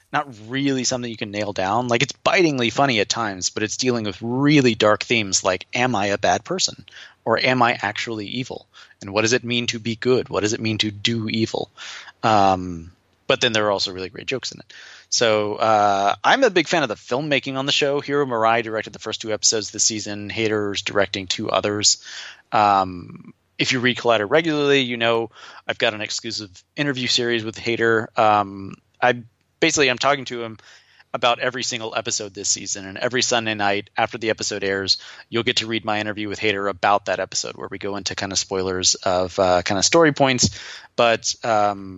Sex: male